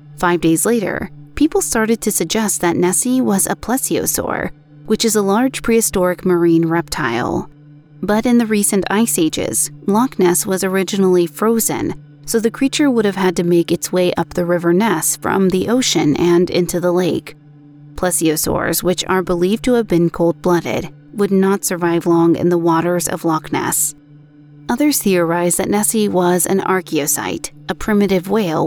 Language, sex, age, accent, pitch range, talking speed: English, female, 30-49, American, 165-210 Hz, 165 wpm